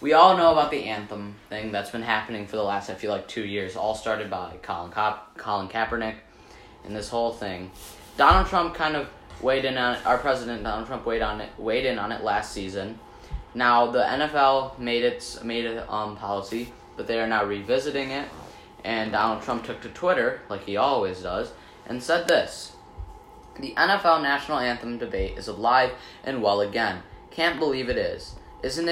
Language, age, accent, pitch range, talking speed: English, 10-29, American, 105-130 Hz, 195 wpm